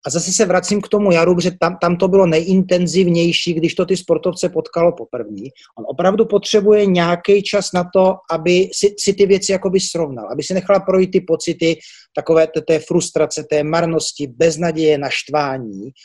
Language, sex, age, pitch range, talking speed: Czech, male, 30-49, 155-185 Hz, 170 wpm